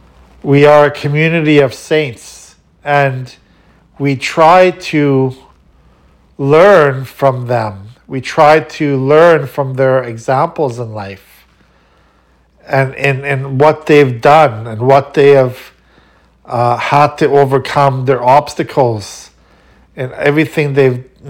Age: 50-69